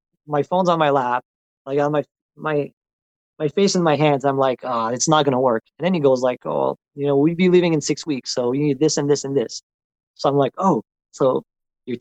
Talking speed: 255 wpm